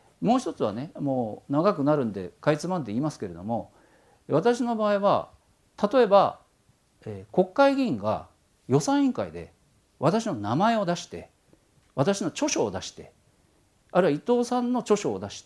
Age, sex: 50-69, male